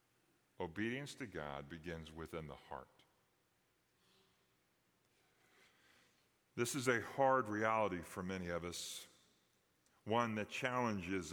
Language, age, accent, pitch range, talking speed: English, 40-59, American, 90-125 Hz, 100 wpm